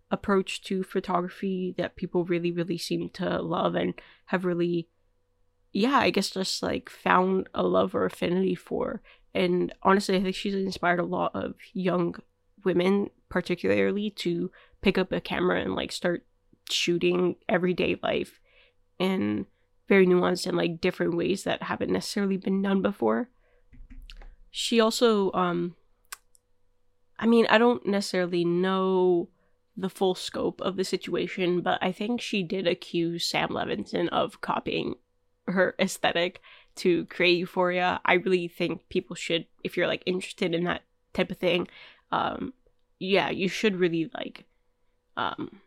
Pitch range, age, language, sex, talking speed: 175-195 Hz, 20-39, English, female, 145 wpm